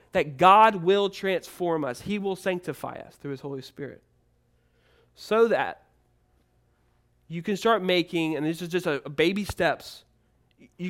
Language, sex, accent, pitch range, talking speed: English, male, American, 150-210 Hz, 155 wpm